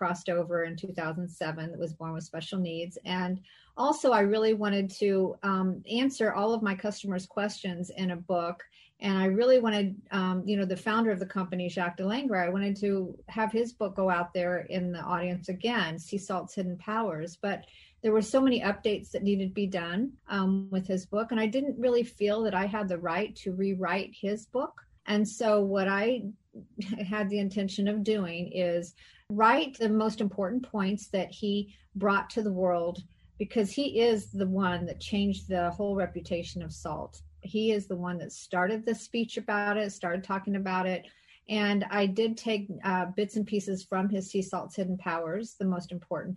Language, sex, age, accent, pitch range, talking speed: English, female, 40-59, American, 180-215 Hz, 195 wpm